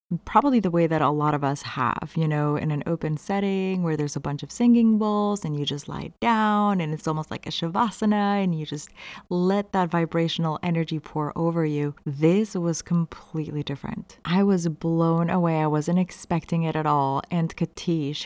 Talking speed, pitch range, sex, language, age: 195 wpm, 155-195 Hz, female, English, 30-49